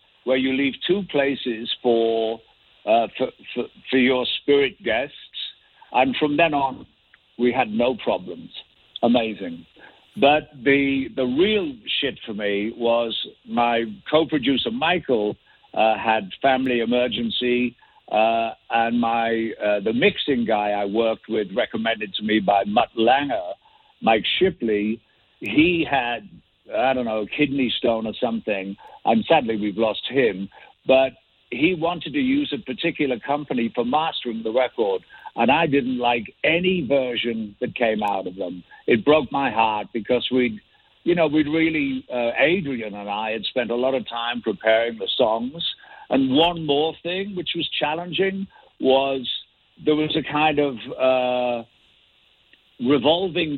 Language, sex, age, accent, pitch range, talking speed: Finnish, male, 60-79, British, 115-155 Hz, 145 wpm